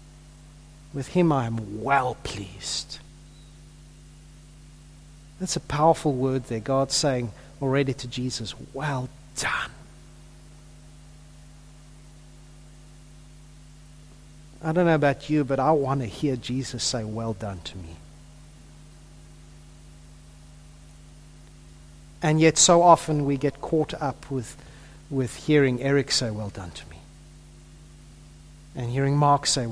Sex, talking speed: male, 110 wpm